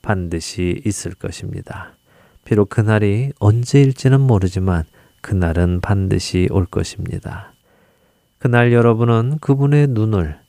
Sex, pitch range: male, 90-120 Hz